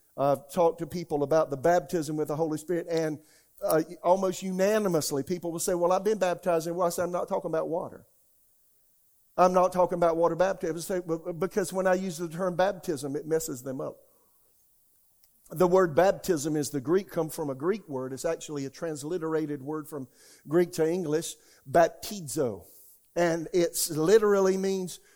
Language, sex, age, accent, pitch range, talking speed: English, male, 50-69, American, 155-185 Hz, 170 wpm